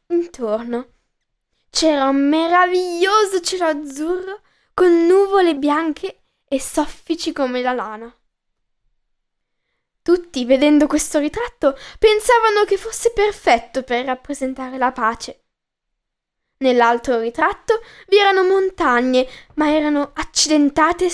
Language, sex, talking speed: Italian, female, 95 wpm